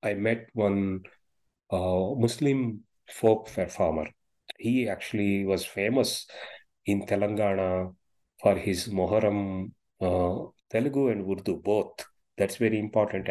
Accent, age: Indian, 30-49